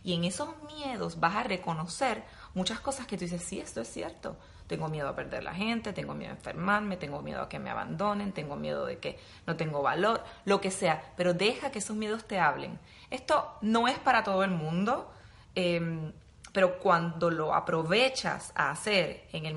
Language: Spanish